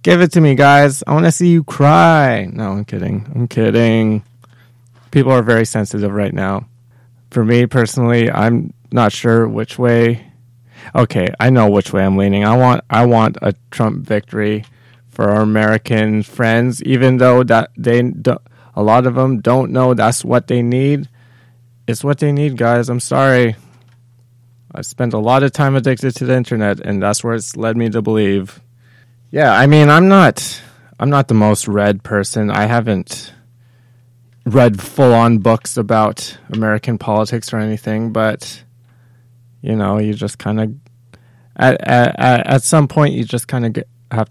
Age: 20-39